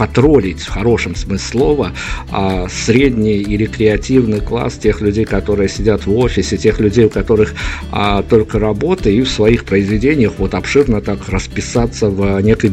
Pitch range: 95-115 Hz